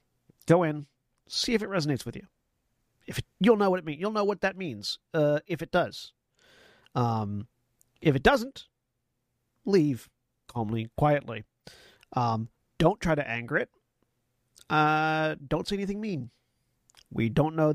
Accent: American